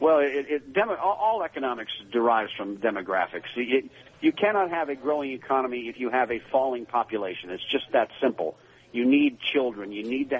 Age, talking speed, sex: 50-69, 160 wpm, male